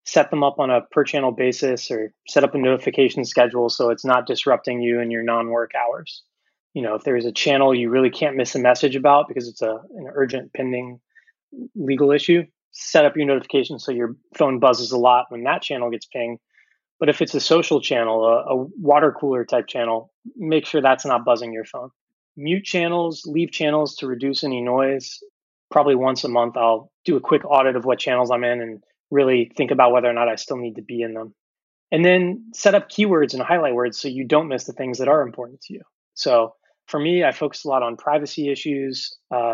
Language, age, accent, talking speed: English, 20-39, American, 220 wpm